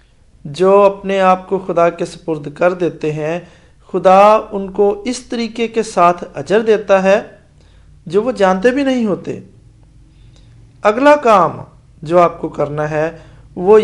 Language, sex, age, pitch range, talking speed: English, male, 50-69, 150-210 Hz, 135 wpm